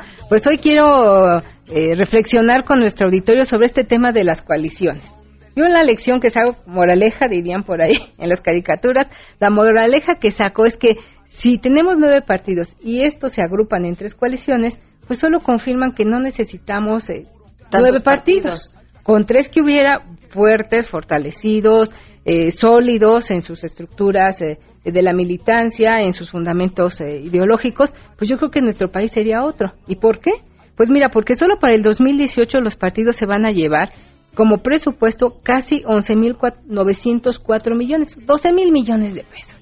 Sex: female